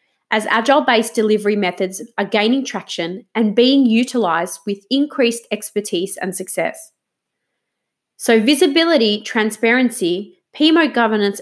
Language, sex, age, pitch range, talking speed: English, female, 20-39, 190-255 Hz, 105 wpm